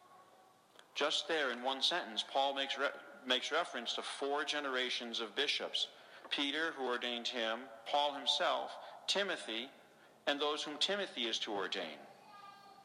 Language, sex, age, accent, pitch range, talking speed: English, male, 50-69, American, 120-170 Hz, 130 wpm